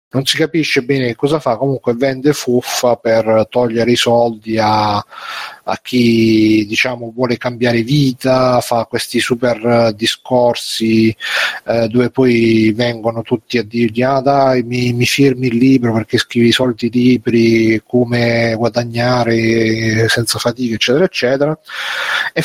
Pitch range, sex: 115-135 Hz, male